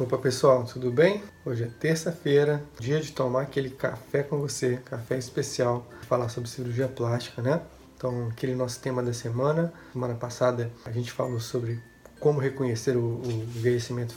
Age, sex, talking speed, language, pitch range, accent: 20-39, male, 160 wpm, Portuguese, 120-135 Hz, Brazilian